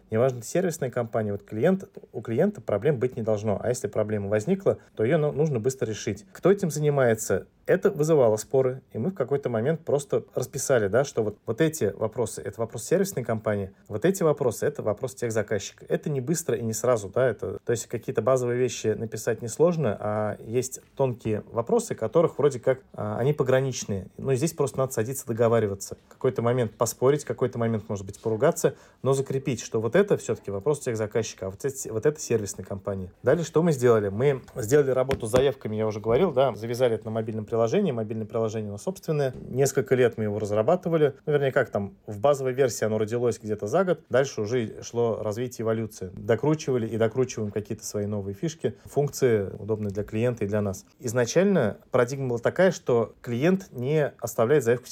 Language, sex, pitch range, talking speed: Russian, male, 110-135 Hz, 190 wpm